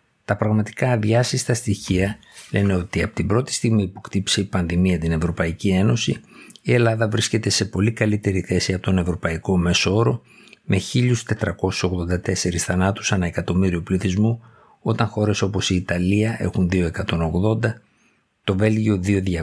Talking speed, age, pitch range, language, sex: 140 wpm, 50-69, 90-110 Hz, Greek, male